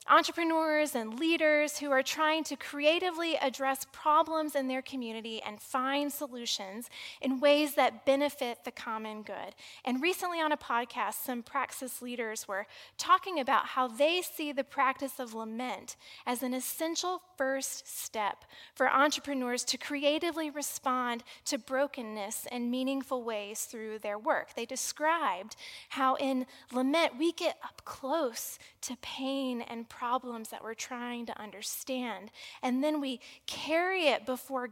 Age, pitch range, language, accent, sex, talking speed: 10-29, 240-295 Hz, English, American, female, 145 wpm